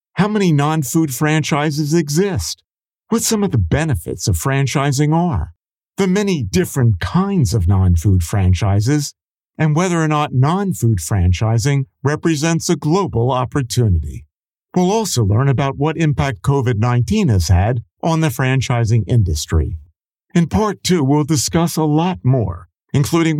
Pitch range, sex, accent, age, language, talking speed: 100-165 Hz, male, American, 50-69, English, 135 wpm